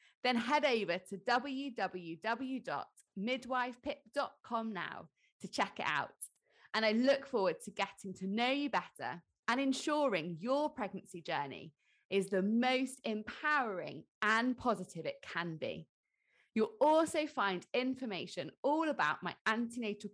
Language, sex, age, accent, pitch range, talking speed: English, female, 20-39, British, 190-265 Hz, 125 wpm